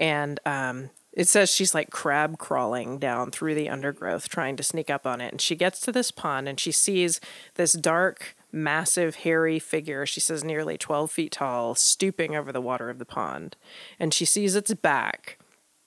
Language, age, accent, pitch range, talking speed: English, 30-49, American, 150-185 Hz, 190 wpm